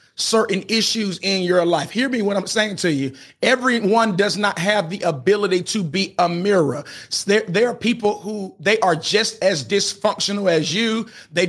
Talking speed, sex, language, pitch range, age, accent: 185 wpm, male, English, 145-190 Hz, 30-49, American